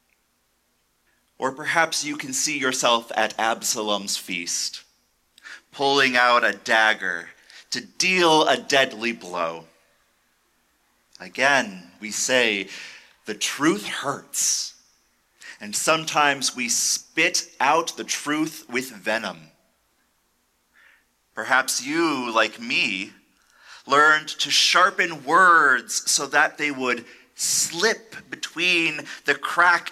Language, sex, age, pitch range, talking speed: English, male, 30-49, 110-155 Hz, 100 wpm